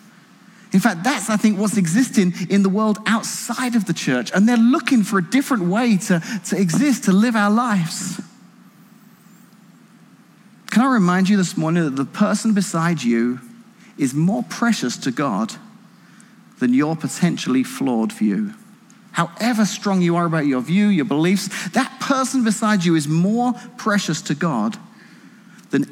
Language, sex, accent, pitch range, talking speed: English, male, British, 190-220 Hz, 155 wpm